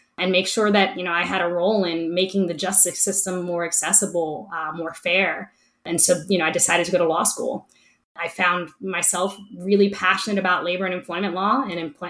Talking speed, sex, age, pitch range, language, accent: 215 wpm, female, 20-39, 175-205 Hz, English, American